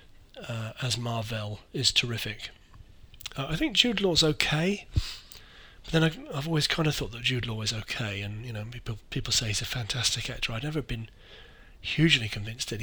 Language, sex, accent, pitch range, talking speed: English, male, British, 110-140 Hz, 185 wpm